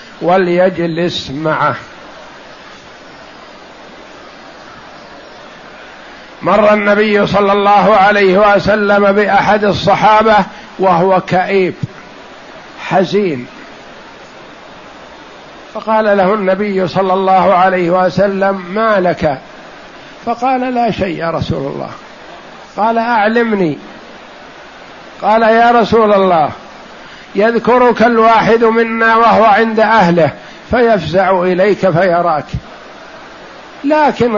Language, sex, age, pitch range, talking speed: Arabic, male, 60-79, 185-230 Hz, 75 wpm